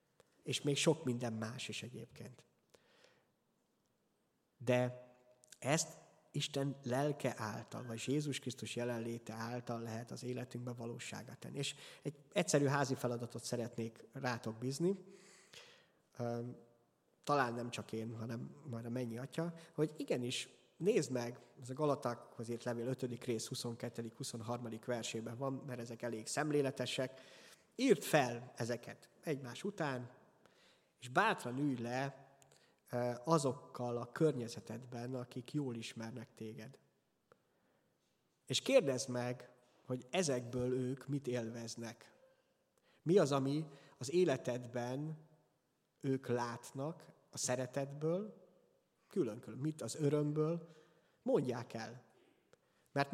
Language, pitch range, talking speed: Hungarian, 120-140 Hz, 110 wpm